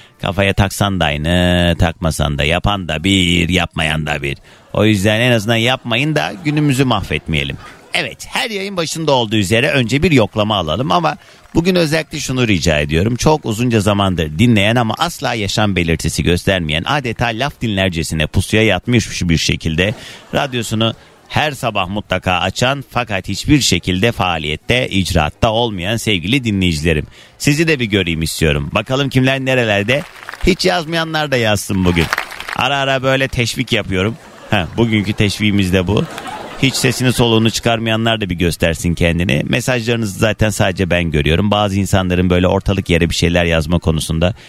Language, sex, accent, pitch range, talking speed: Turkish, male, native, 85-120 Hz, 150 wpm